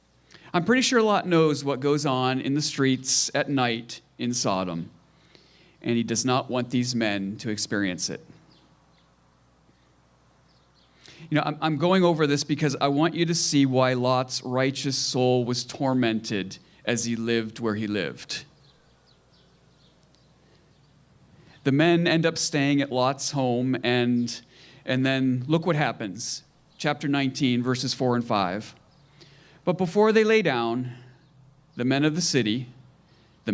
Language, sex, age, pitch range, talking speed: English, male, 40-59, 115-145 Hz, 145 wpm